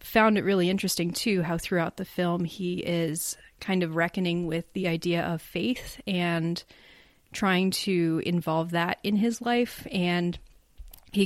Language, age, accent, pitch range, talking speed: English, 30-49, American, 170-190 Hz, 155 wpm